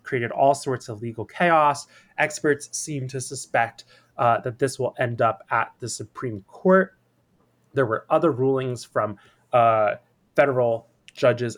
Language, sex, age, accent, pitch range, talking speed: English, male, 20-39, American, 115-145 Hz, 145 wpm